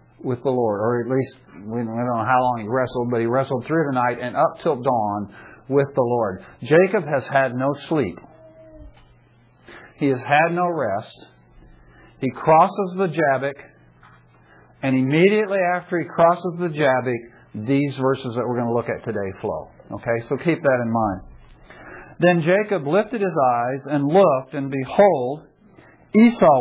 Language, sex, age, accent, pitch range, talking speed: English, male, 50-69, American, 125-175 Hz, 165 wpm